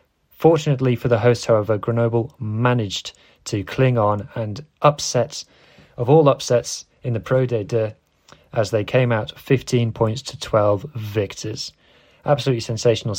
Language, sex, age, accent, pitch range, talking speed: English, male, 20-39, British, 105-130 Hz, 140 wpm